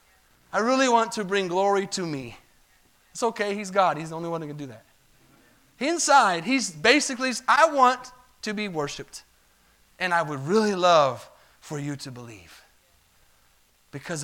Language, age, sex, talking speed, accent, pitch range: English, 30-49, male, 160 wpm, American, 135-210 Hz